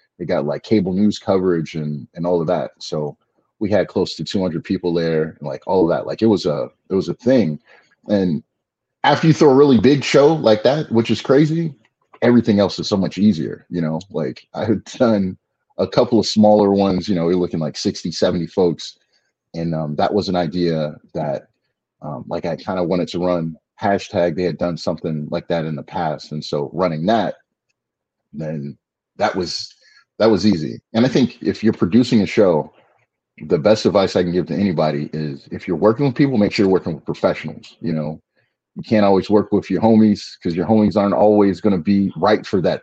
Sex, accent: male, American